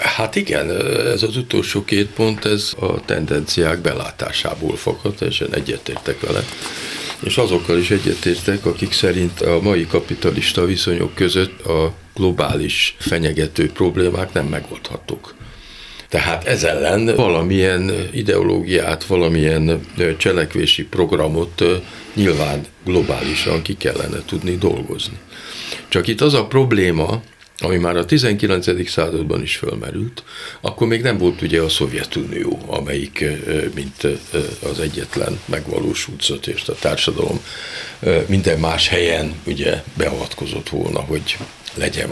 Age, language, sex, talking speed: 50-69, Hungarian, male, 115 wpm